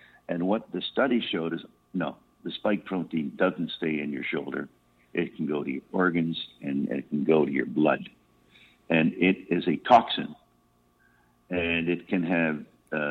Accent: American